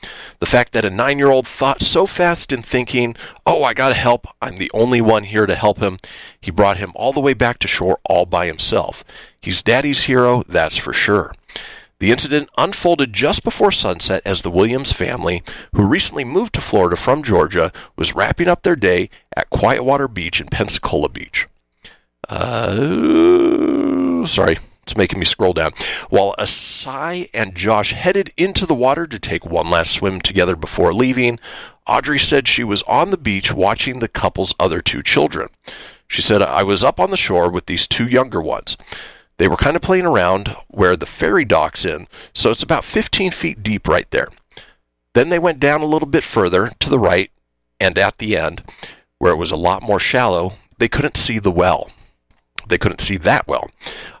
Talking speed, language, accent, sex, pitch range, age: 190 wpm, English, American, male, 95-140 Hz, 40-59